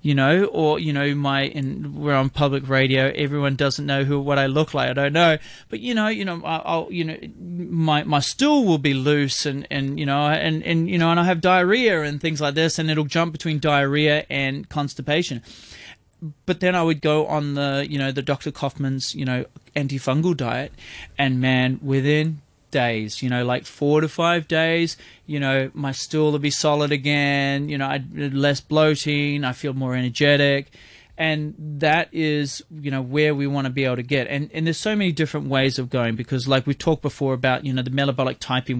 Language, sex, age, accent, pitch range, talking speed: English, male, 20-39, Australian, 130-150 Hz, 210 wpm